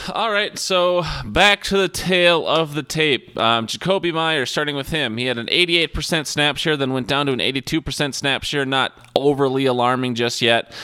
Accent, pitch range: American, 120-155 Hz